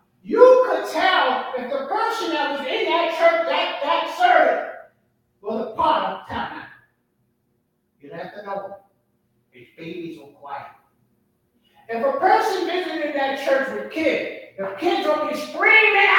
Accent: American